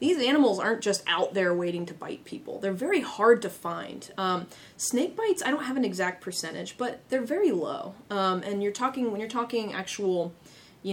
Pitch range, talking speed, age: 180-230 Hz, 200 wpm, 20-39